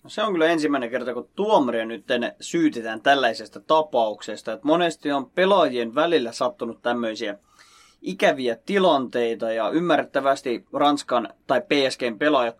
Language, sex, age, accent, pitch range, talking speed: Finnish, male, 20-39, native, 120-155 Hz, 125 wpm